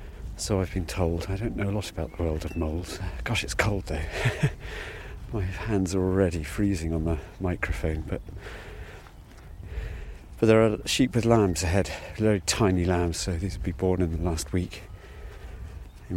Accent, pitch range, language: British, 80-95 Hz, English